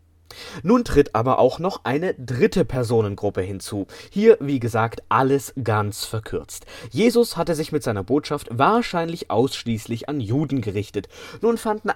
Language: German